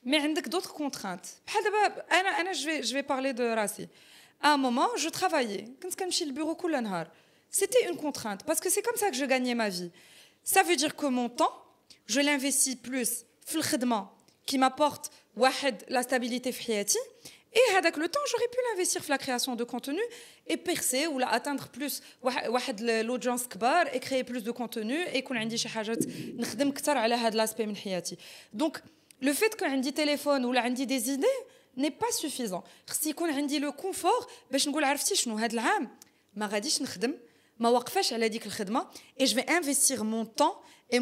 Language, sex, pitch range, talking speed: French, female, 245-315 Hz, 155 wpm